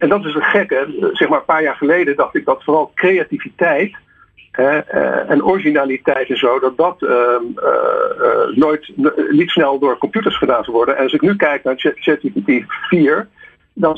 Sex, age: male, 50-69